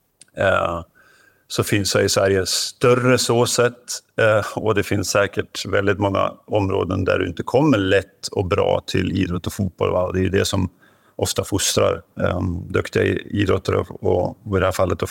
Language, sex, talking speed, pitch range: Swedish, male, 175 wpm, 95-105 Hz